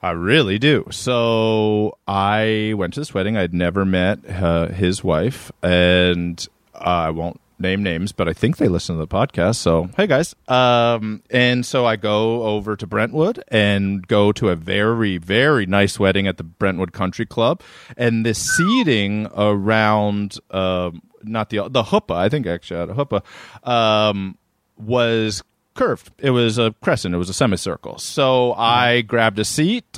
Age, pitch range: 30-49, 100-120 Hz